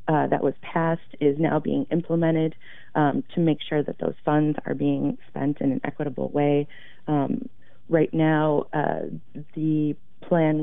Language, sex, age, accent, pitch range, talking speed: English, female, 40-59, American, 145-170 Hz, 160 wpm